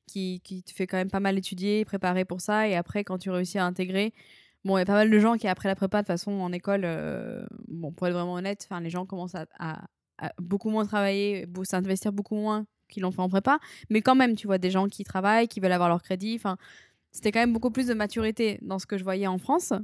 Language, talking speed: French, 270 wpm